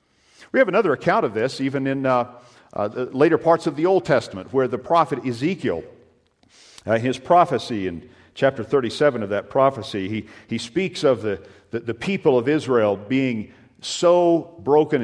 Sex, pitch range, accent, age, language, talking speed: male, 110-150 Hz, American, 50-69, English, 170 wpm